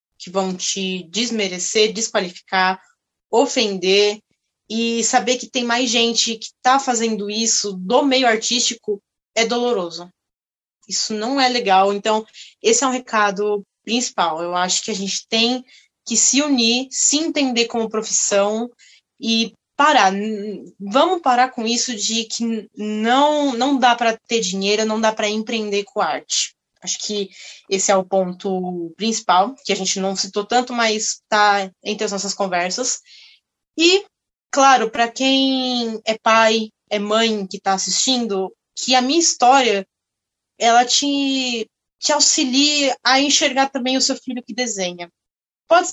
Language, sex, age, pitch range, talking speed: Portuguese, female, 20-39, 205-250 Hz, 145 wpm